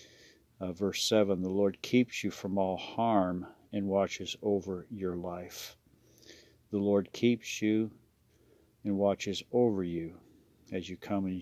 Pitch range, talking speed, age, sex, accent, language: 95-105 Hz, 140 wpm, 50-69, male, American, English